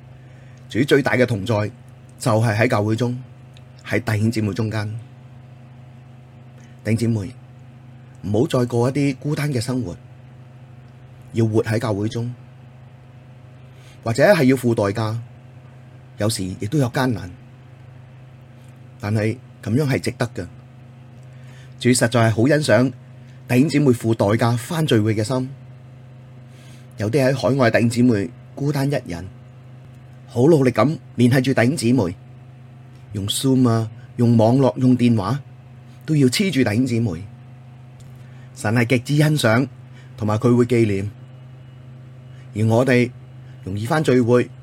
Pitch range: 120-130 Hz